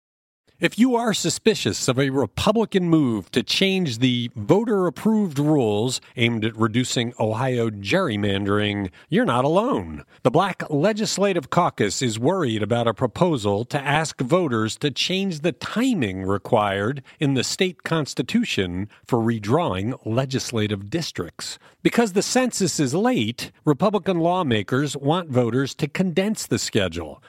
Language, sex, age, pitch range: English, male, 50-69, 110-170 Hz